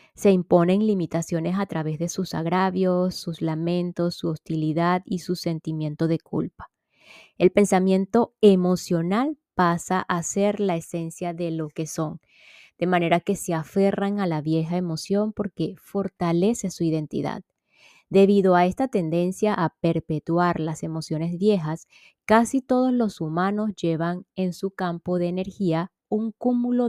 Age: 20-39